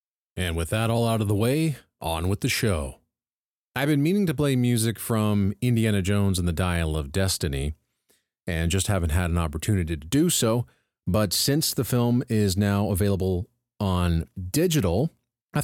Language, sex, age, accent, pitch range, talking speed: English, male, 40-59, American, 80-115 Hz, 175 wpm